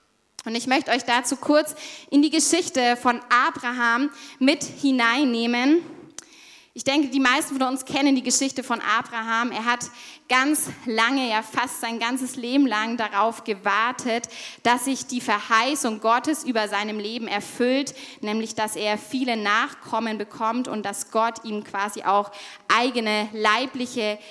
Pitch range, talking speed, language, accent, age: 225-275 Hz, 145 wpm, German, German, 20-39